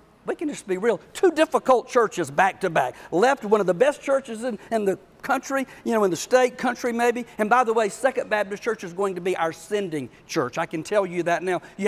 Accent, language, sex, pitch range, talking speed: American, English, male, 180-245 Hz, 235 wpm